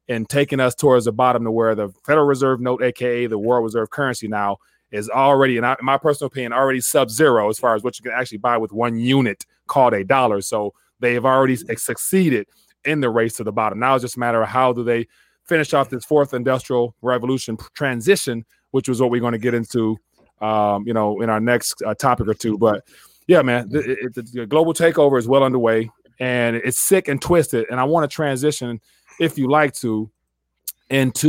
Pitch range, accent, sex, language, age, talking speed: 115-135 Hz, American, male, English, 30-49, 215 wpm